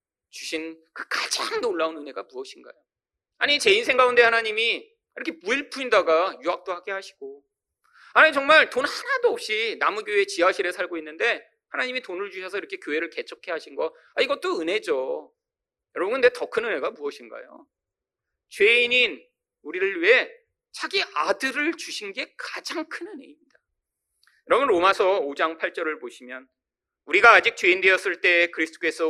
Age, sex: 40-59, male